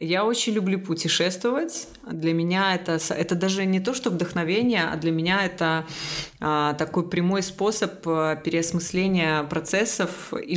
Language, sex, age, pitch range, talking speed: Russian, female, 20-39, 155-185 Hz, 135 wpm